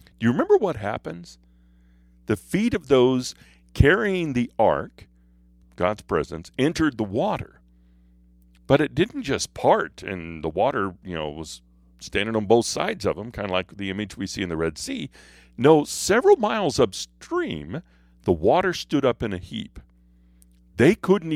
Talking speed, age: 165 wpm, 50-69